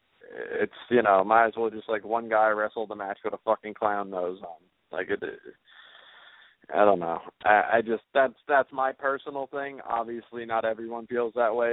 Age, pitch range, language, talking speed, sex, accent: 20-39, 95-115 Hz, English, 200 wpm, male, American